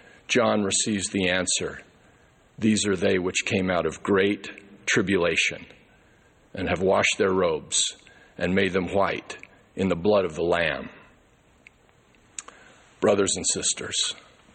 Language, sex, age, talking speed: English, male, 50-69, 130 wpm